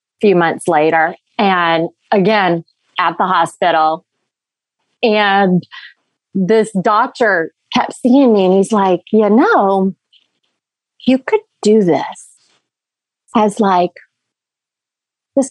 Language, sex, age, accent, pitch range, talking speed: English, female, 30-49, American, 180-250 Hz, 100 wpm